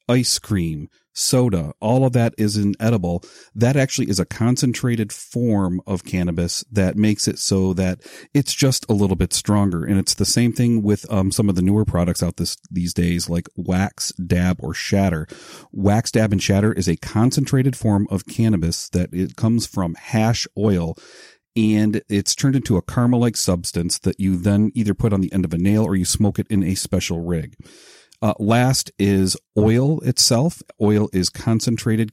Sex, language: male, English